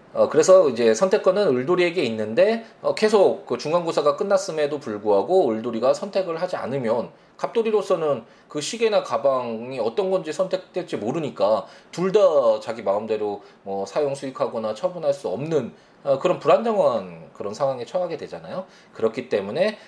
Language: Korean